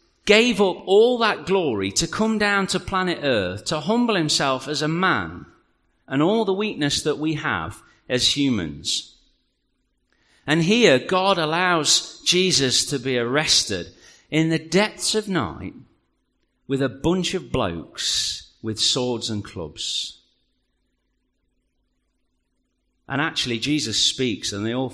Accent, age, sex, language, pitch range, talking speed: British, 40-59, male, English, 110-155 Hz, 130 wpm